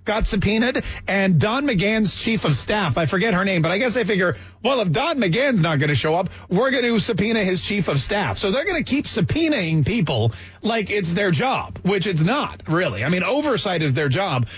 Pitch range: 140-200 Hz